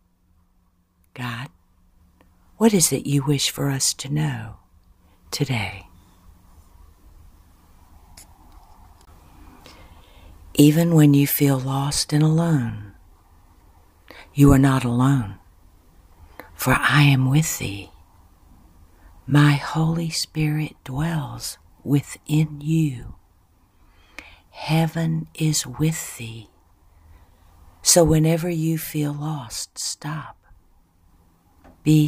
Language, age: English, 60-79